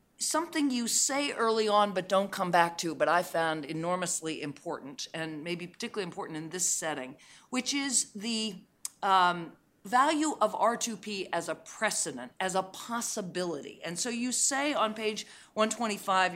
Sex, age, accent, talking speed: female, 40-59, American, 155 wpm